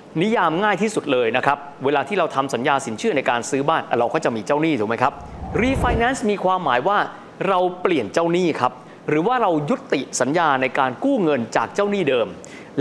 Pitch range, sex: 145-190 Hz, male